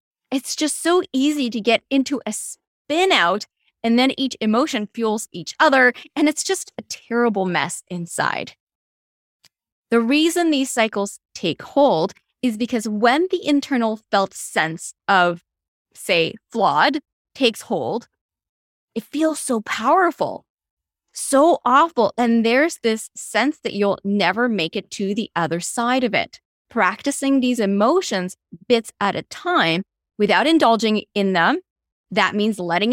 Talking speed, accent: 140 wpm, American